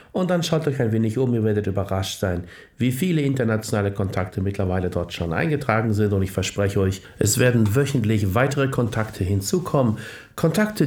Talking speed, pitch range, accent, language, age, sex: 170 wpm, 105-130 Hz, German, German, 60-79, male